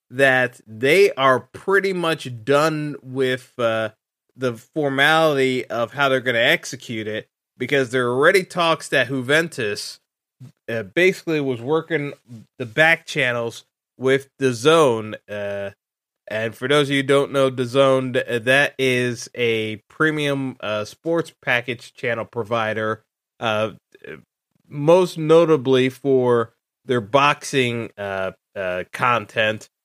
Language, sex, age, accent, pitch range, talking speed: English, male, 30-49, American, 115-140 Hz, 125 wpm